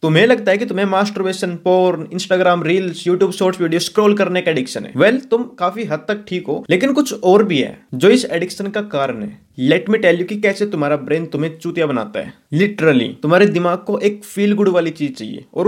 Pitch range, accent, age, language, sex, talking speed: 170-215 Hz, native, 20-39, Hindi, male, 170 wpm